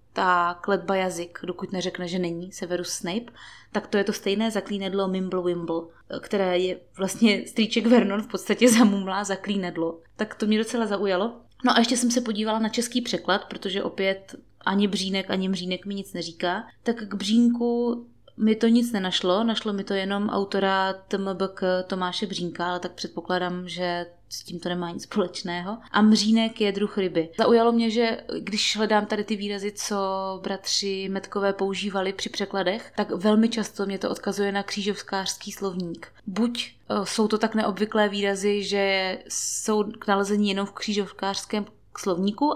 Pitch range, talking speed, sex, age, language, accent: 185-215 Hz, 165 wpm, female, 20-39, Czech, native